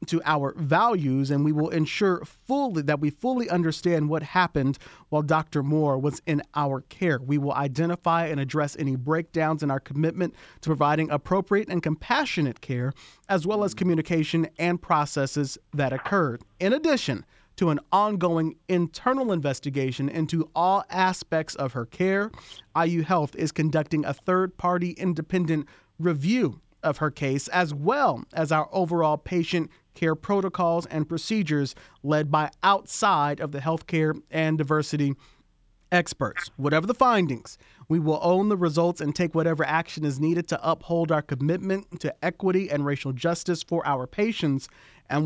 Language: English